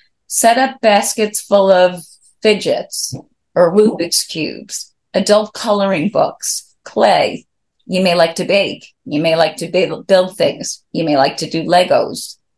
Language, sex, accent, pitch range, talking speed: English, female, American, 165-205 Hz, 145 wpm